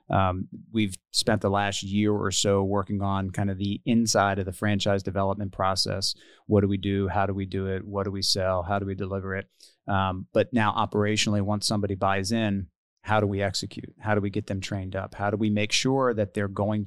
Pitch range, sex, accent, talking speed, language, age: 95-110 Hz, male, American, 230 wpm, English, 30-49